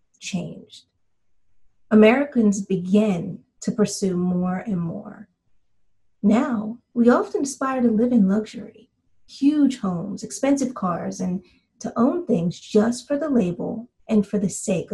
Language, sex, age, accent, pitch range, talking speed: English, female, 30-49, American, 180-235 Hz, 130 wpm